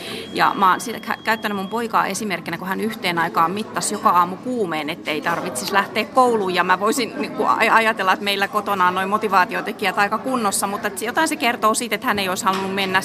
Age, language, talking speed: 30-49, Finnish, 200 wpm